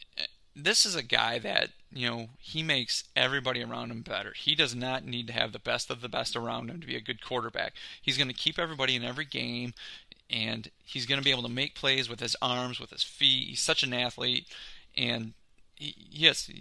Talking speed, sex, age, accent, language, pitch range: 215 wpm, male, 30-49, American, English, 125-155 Hz